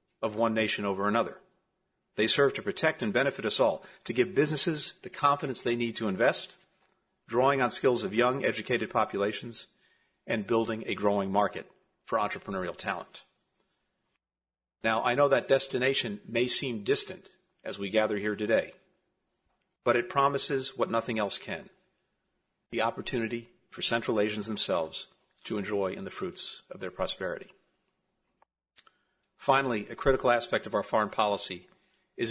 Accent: American